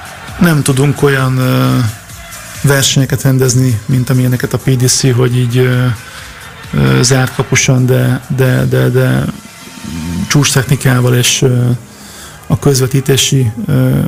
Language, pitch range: Hungarian, 125-140 Hz